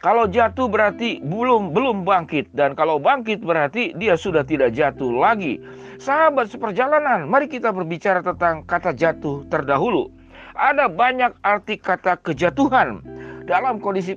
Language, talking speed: Indonesian, 130 wpm